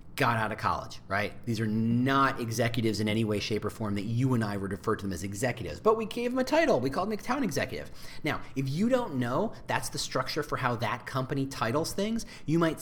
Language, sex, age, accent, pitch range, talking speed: English, male, 40-59, American, 120-165 Hz, 250 wpm